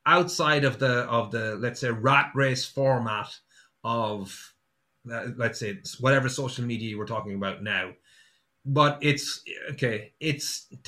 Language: English